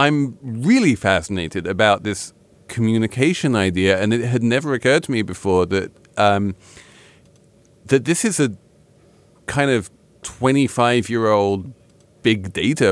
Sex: male